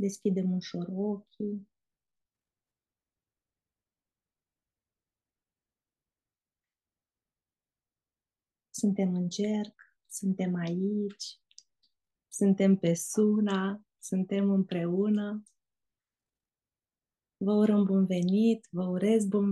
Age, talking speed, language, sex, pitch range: 30-49, 60 wpm, Romanian, female, 180-210 Hz